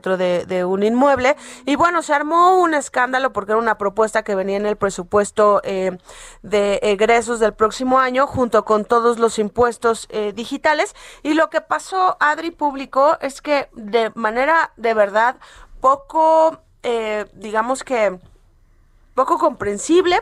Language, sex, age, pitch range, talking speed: Spanish, female, 30-49, 215-280 Hz, 150 wpm